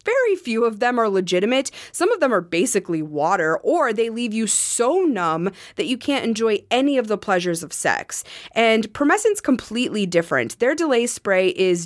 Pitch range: 185-245 Hz